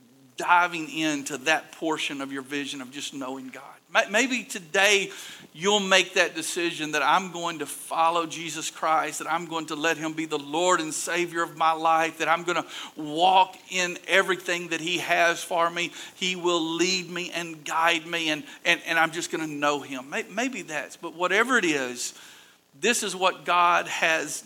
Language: English